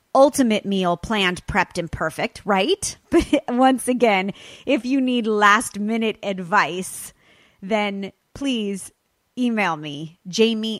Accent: American